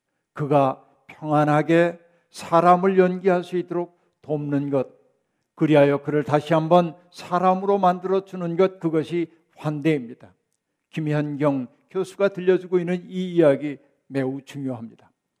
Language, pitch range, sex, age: Korean, 150-180 Hz, male, 60-79